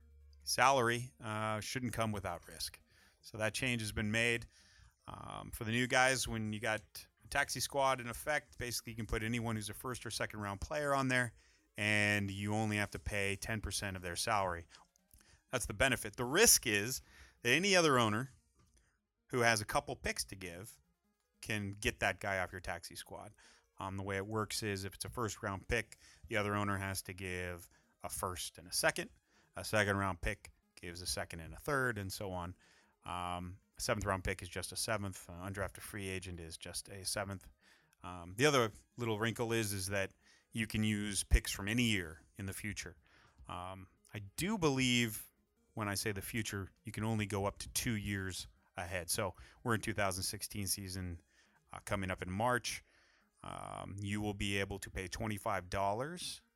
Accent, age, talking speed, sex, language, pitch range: American, 30-49, 190 wpm, male, English, 95-115 Hz